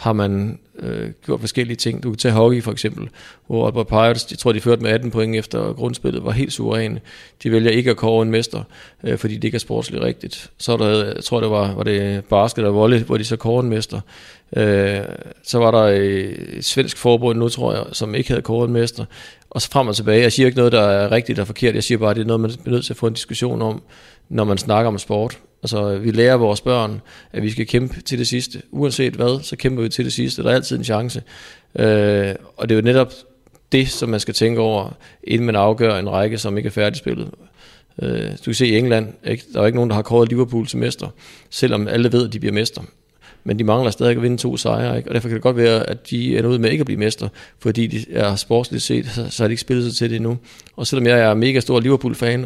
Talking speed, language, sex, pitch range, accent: 255 wpm, Danish, male, 105-120 Hz, native